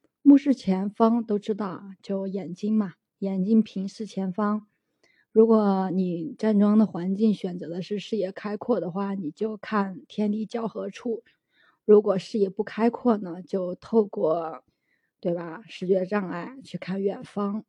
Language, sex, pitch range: Chinese, female, 195-225 Hz